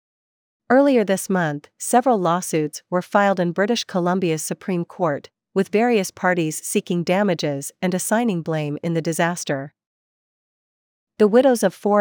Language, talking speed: English, 135 wpm